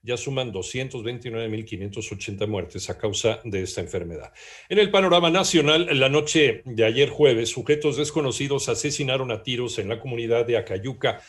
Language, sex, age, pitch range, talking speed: Spanish, male, 50-69, 115-160 Hz, 150 wpm